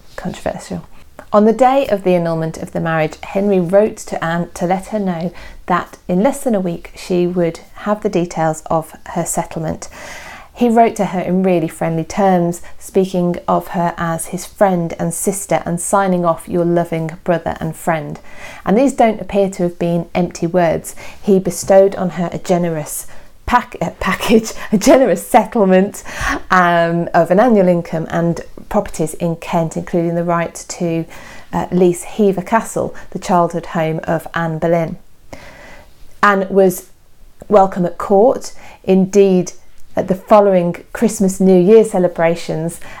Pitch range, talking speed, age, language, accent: 170-200 Hz, 155 wpm, 40-59, English, British